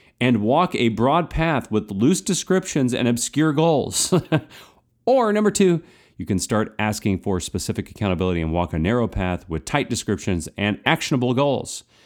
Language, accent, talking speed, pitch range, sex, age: English, American, 160 wpm, 100-150 Hz, male, 40-59